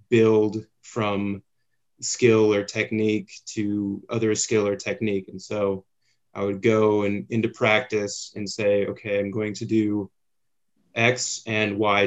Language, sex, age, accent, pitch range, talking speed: English, male, 20-39, American, 100-115 Hz, 145 wpm